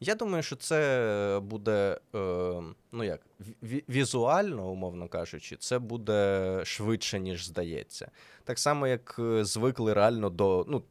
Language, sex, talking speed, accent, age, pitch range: Ukrainian, male, 120 wpm, native, 20-39, 95-125 Hz